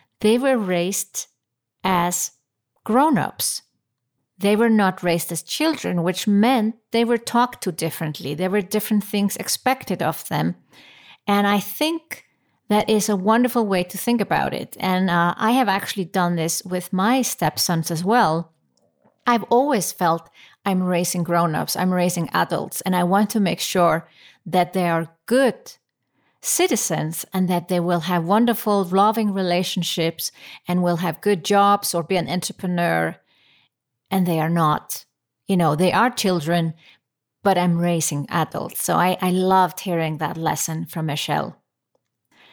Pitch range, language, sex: 170-210 Hz, English, female